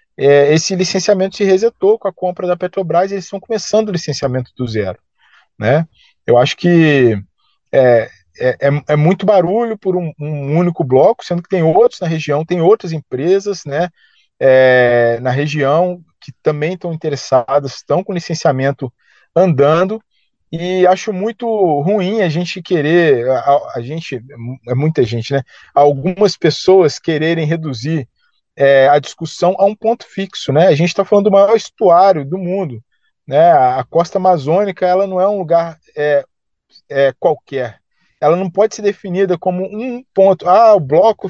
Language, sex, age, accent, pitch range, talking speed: Portuguese, male, 40-59, Brazilian, 145-190 Hz, 150 wpm